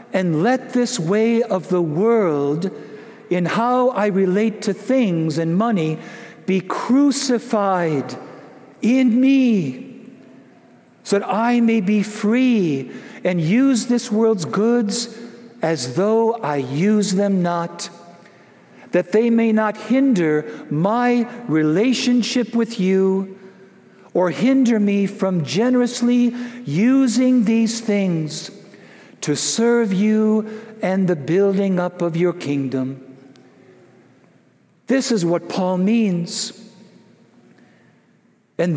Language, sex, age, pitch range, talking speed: English, male, 60-79, 165-230 Hz, 105 wpm